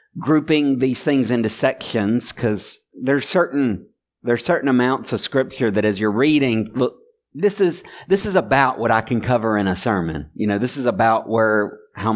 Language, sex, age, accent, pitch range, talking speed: English, male, 50-69, American, 100-130 Hz, 185 wpm